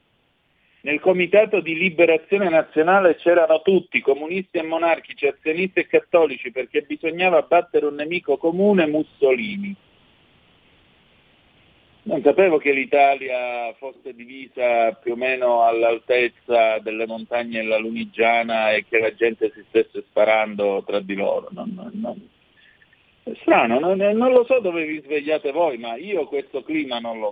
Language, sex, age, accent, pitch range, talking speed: Italian, male, 50-69, native, 120-195 Hz, 140 wpm